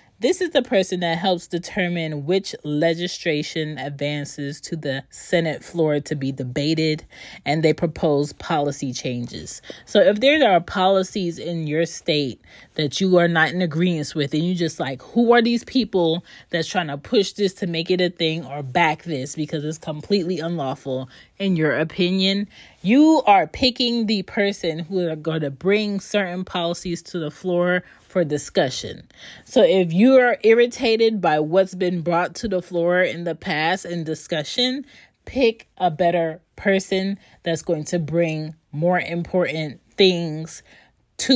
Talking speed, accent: 160 wpm, American